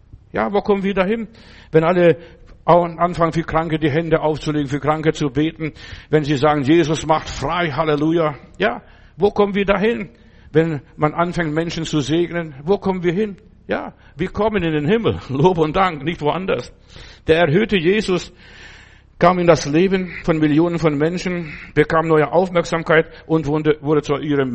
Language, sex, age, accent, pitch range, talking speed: German, male, 60-79, German, 150-180 Hz, 165 wpm